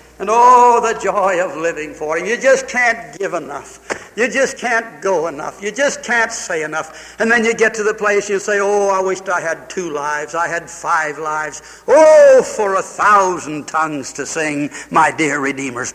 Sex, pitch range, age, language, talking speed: male, 150-210 Hz, 60-79, English, 200 wpm